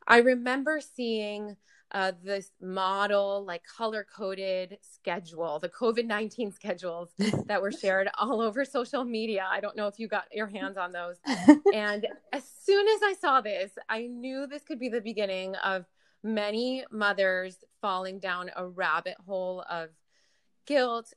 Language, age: English, 20-39